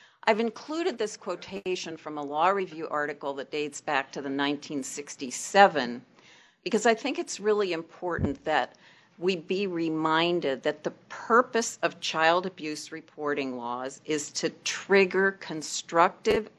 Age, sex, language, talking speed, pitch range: 50-69, female, English, 135 wpm, 140-190 Hz